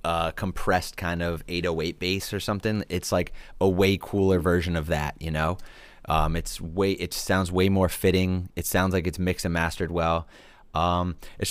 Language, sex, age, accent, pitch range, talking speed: English, male, 30-49, American, 85-105 Hz, 190 wpm